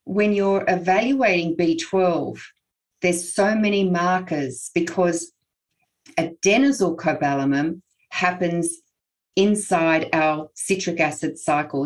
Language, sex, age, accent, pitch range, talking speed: English, female, 40-59, Australian, 155-195 Hz, 80 wpm